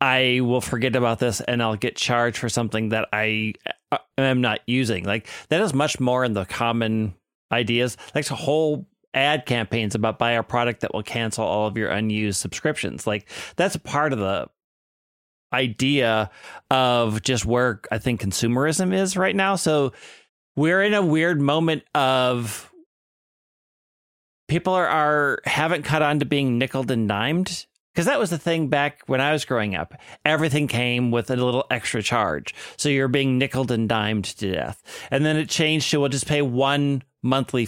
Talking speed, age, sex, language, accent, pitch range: 180 wpm, 30-49, male, English, American, 115-145 Hz